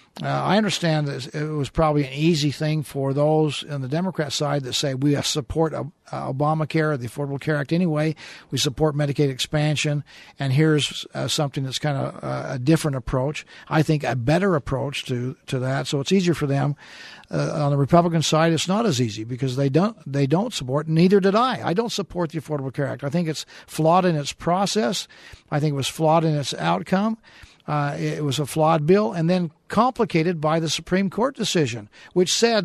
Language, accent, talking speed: English, American, 205 wpm